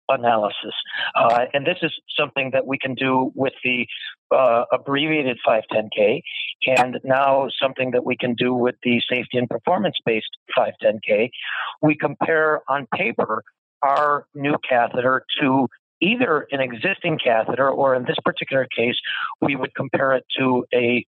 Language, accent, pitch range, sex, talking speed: English, American, 125-150 Hz, male, 145 wpm